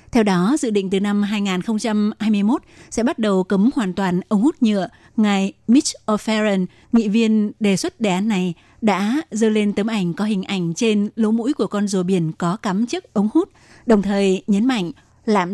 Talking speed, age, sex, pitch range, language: 195 wpm, 20-39, female, 195-230 Hz, Vietnamese